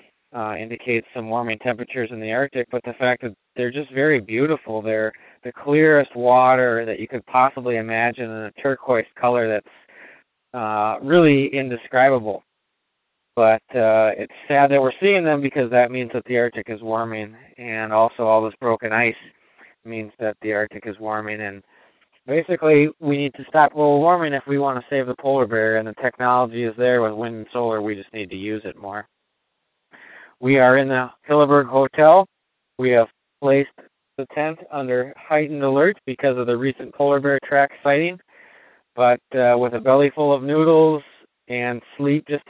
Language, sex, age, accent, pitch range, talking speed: English, male, 20-39, American, 115-145 Hz, 180 wpm